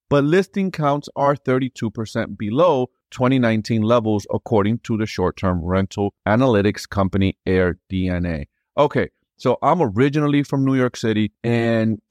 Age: 30-49